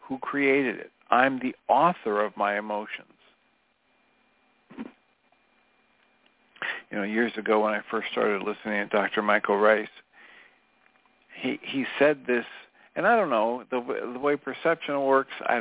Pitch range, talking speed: 115-150 Hz, 140 wpm